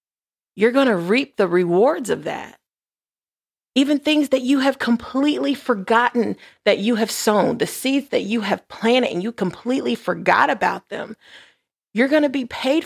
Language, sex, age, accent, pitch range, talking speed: English, female, 30-49, American, 205-260 Hz, 170 wpm